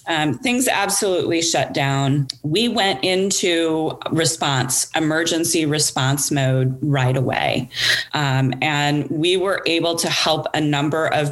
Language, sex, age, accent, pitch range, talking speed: English, female, 30-49, American, 145-180 Hz, 125 wpm